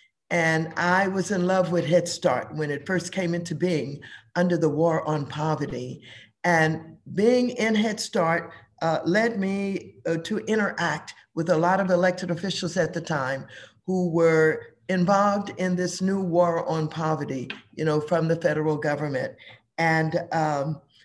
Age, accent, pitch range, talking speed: 50-69, American, 155-185 Hz, 155 wpm